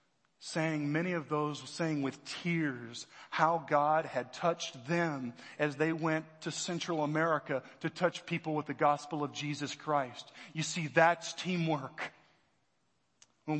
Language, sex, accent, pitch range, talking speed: English, male, American, 170-260 Hz, 140 wpm